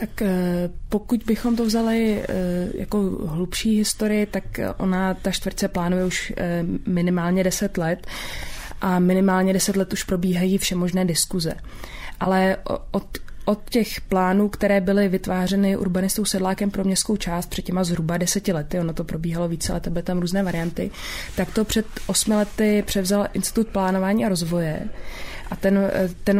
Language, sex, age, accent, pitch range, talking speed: English, female, 20-39, Czech, 180-205 Hz, 145 wpm